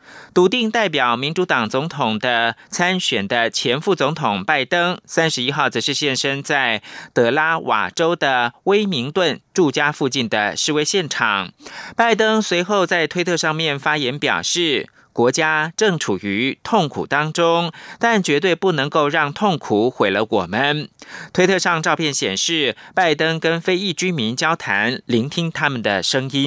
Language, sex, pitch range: German, male, 145-190 Hz